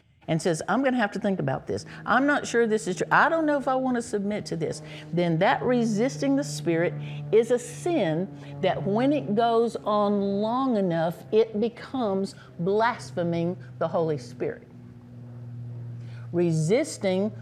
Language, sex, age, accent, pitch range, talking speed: English, female, 50-69, American, 155-225 Hz, 165 wpm